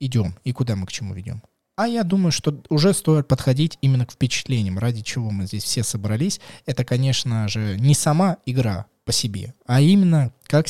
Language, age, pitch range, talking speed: Russian, 20-39, 110-140 Hz, 190 wpm